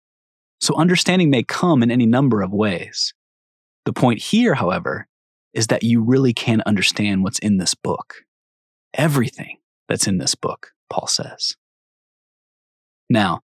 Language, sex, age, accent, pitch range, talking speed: English, male, 20-39, American, 105-135 Hz, 135 wpm